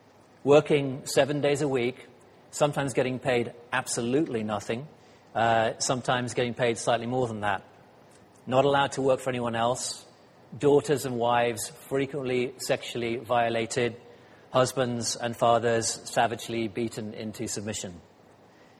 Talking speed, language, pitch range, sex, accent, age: 120 wpm, English, 110-130 Hz, male, British, 40-59